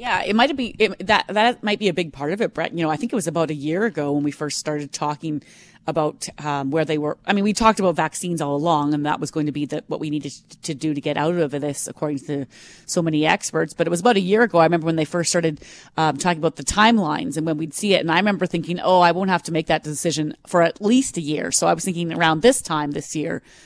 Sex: female